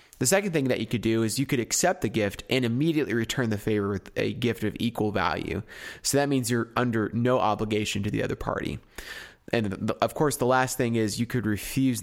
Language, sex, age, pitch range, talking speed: English, male, 20-39, 105-130 Hz, 225 wpm